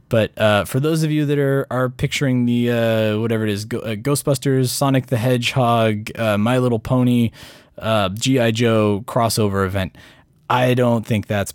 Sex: male